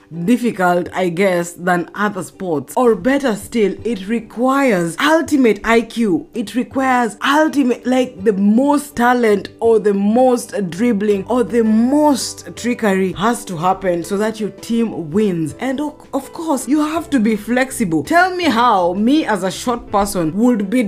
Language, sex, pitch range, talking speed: English, female, 180-245 Hz, 155 wpm